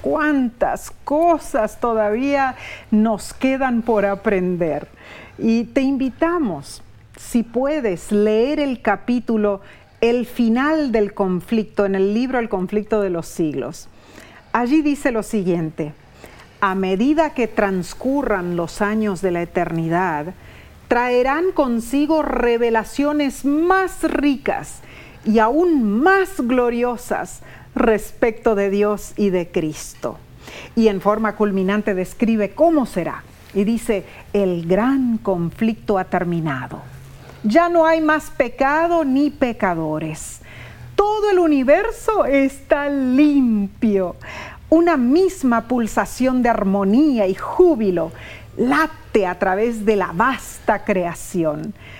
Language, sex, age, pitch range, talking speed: Spanish, female, 40-59, 195-275 Hz, 110 wpm